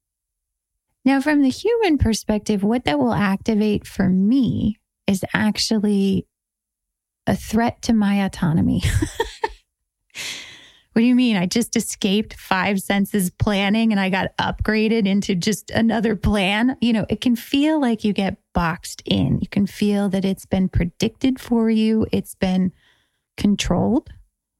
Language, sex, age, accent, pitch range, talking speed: English, female, 20-39, American, 195-235 Hz, 140 wpm